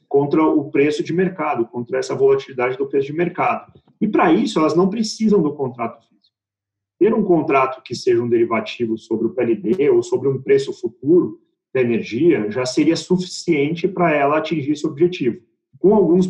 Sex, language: male, Portuguese